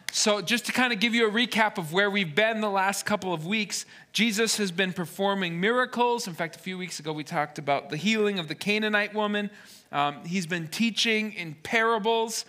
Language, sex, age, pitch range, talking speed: English, male, 40-59, 165-210 Hz, 210 wpm